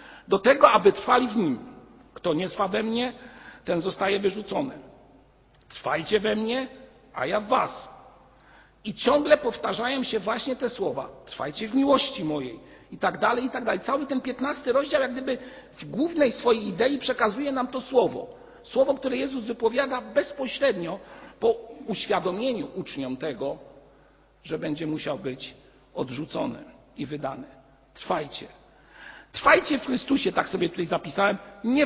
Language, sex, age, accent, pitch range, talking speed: Polish, male, 50-69, native, 195-260 Hz, 145 wpm